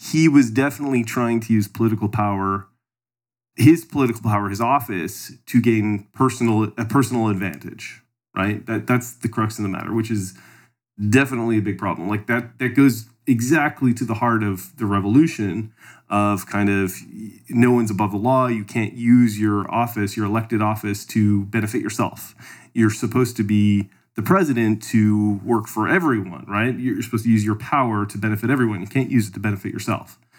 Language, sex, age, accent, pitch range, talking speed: English, male, 20-39, American, 105-125 Hz, 180 wpm